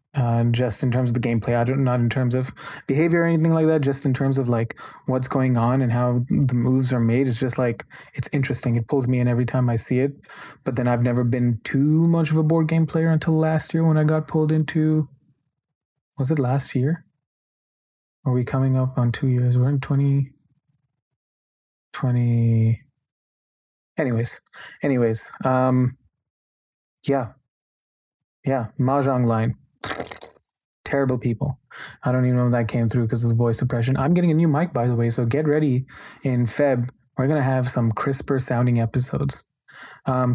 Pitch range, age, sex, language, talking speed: 120-145 Hz, 20-39, male, English, 185 wpm